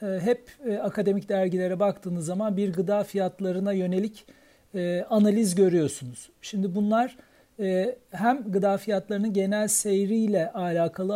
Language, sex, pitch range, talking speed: Turkish, male, 180-215 Hz, 115 wpm